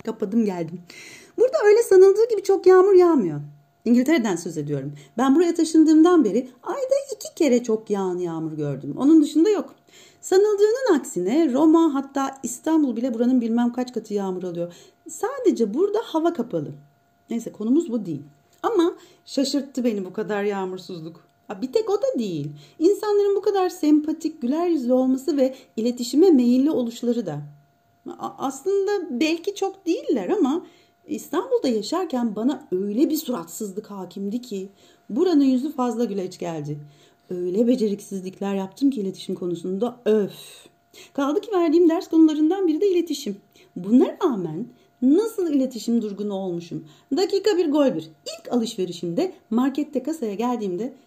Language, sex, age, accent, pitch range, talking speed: Turkish, female, 40-59, native, 205-340 Hz, 135 wpm